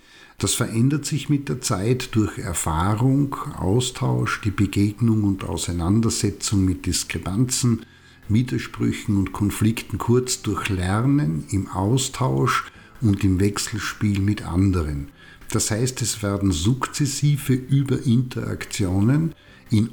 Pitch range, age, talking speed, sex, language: 100-125 Hz, 50-69, 105 wpm, male, German